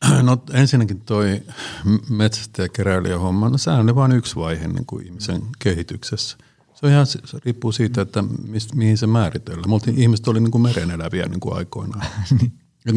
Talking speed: 155 wpm